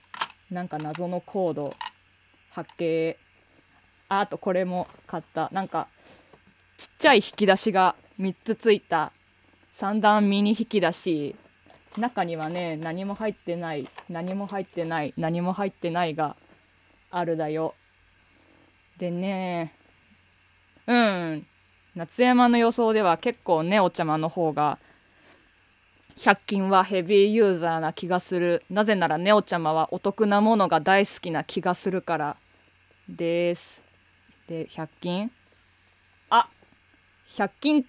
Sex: female